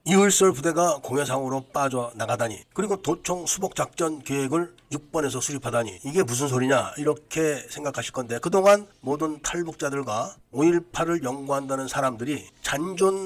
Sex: male